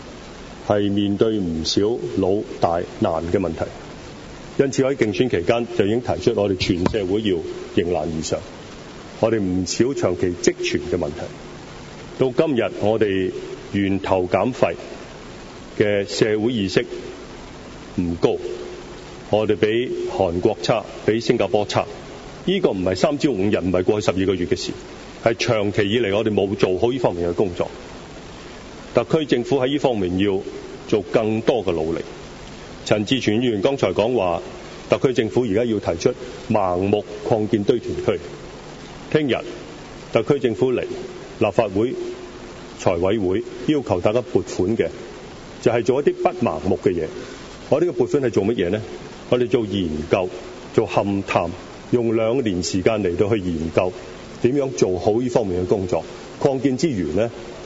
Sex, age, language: male, 30-49, English